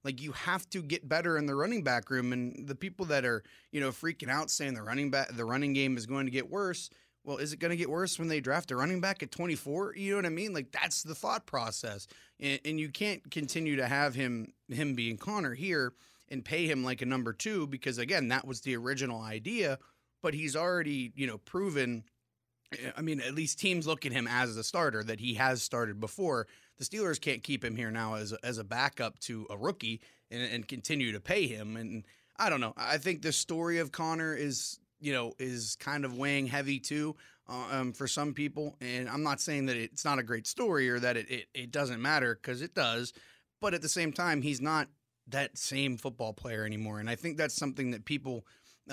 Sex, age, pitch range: male, 30-49, 120-155 Hz